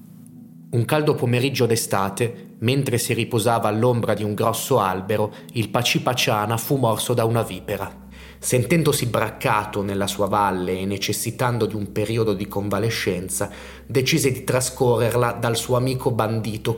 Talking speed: 135 wpm